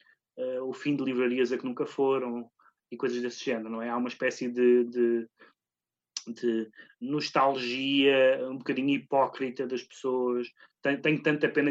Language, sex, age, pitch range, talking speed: Portuguese, male, 20-39, 120-150 Hz, 165 wpm